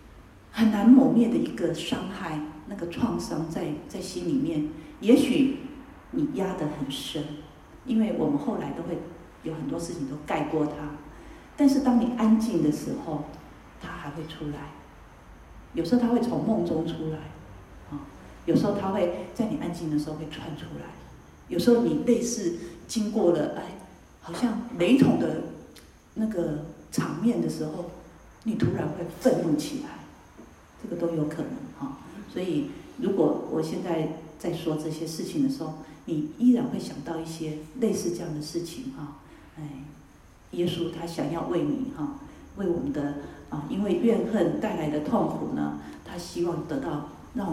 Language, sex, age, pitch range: Chinese, female, 40-59, 155-230 Hz